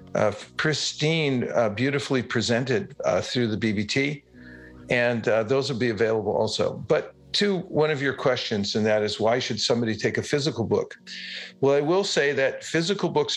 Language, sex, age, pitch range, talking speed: English, male, 50-69, 110-140 Hz, 175 wpm